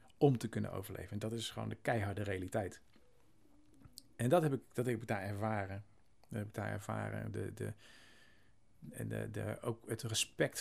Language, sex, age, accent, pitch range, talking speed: Dutch, male, 40-59, Dutch, 100-115 Hz, 180 wpm